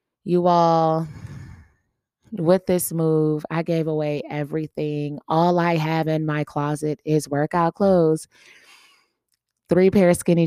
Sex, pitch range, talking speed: female, 145-180 Hz, 125 wpm